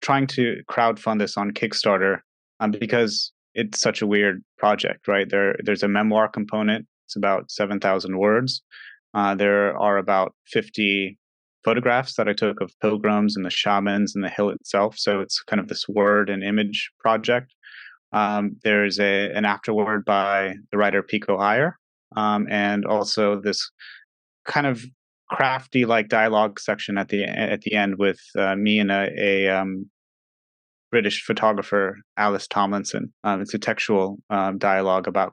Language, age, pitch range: English, 30-49, 100-110 Hz